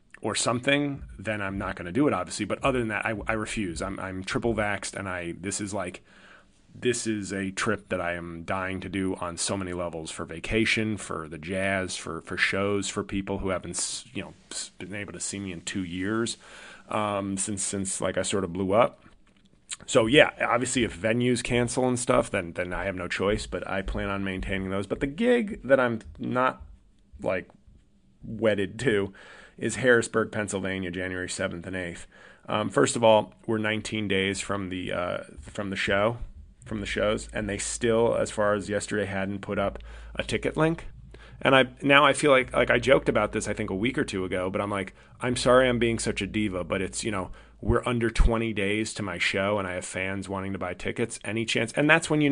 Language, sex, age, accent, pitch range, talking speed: English, male, 30-49, American, 95-115 Hz, 215 wpm